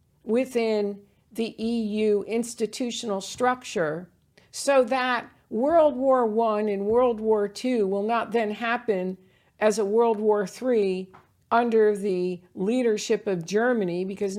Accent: American